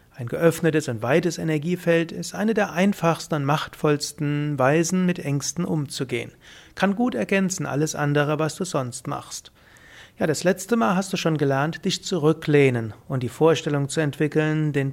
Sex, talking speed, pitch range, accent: male, 160 wpm, 140-175 Hz, German